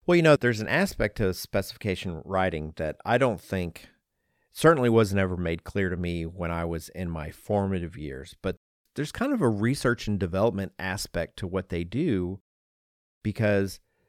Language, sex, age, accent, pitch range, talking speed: English, male, 40-59, American, 90-105 Hz, 175 wpm